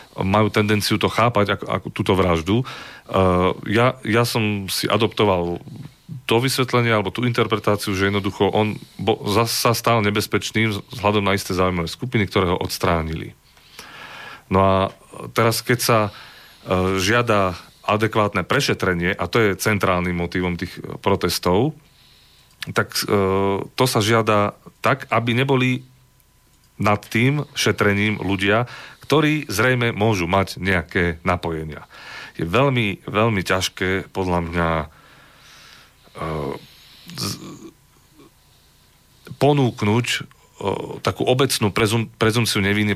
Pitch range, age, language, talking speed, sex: 90-115 Hz, 40-59, Slovak, 115 wpm, male